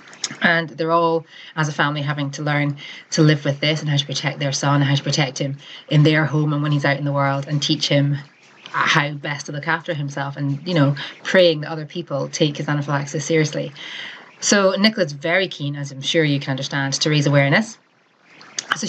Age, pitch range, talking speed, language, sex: 30-49, 145-170 Hz, 215 wpm, English, female